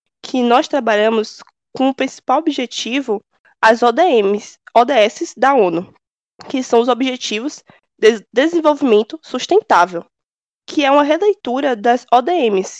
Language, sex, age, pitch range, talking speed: Portuguese, female, 20-39, 215-270 Hz, 115 wpm